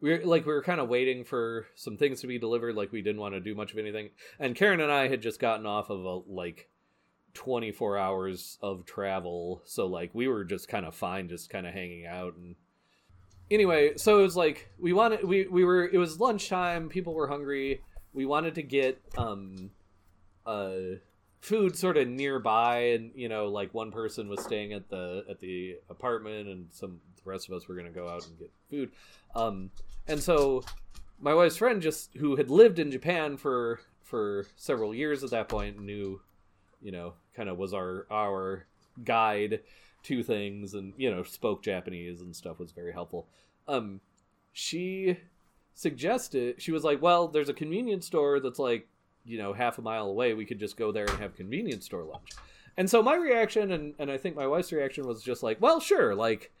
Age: 30-49